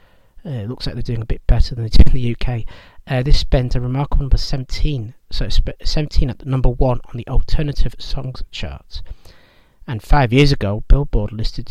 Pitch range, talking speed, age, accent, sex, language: 105-135 Hz, 200 wpm, 40-59, British, male, English